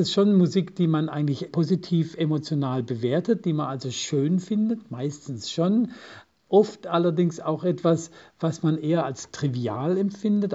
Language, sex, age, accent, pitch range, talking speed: German, male, 50-69, German, 145-175 Hz, 150 wpm